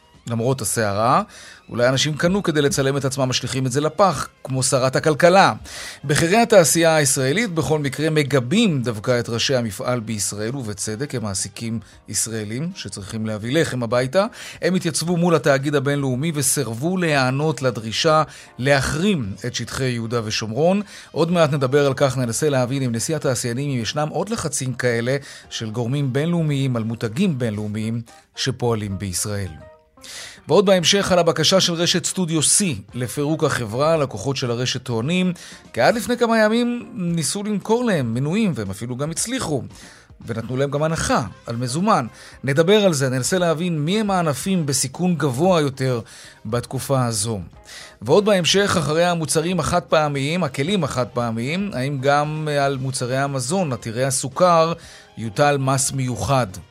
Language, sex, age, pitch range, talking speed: Hebrew, male, 30-49, 120-165 Hz, 145 wpm